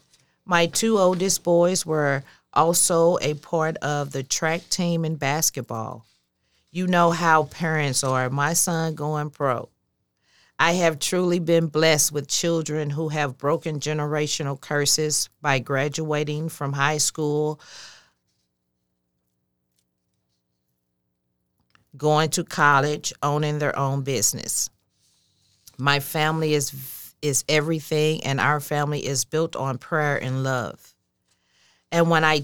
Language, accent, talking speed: English, American, 120 wpm